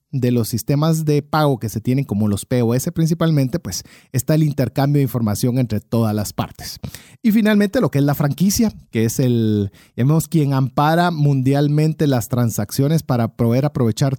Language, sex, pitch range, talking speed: Spanish, male, 125-160 Hz, 175 wpm